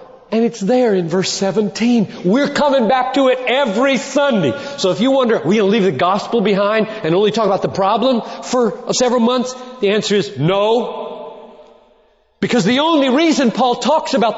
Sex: male